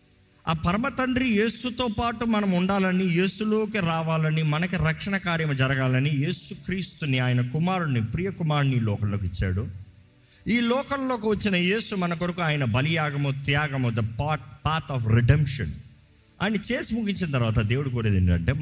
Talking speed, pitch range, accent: 125 wpm, 115-185 Hz, native